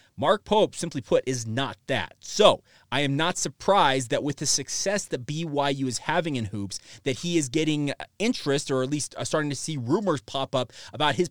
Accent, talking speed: American, 200 wpm